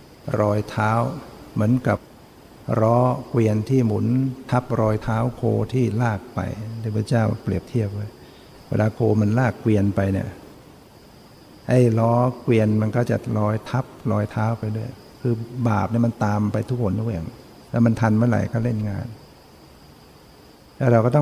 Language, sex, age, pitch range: Thai, male, 60-79, 105-120 Hz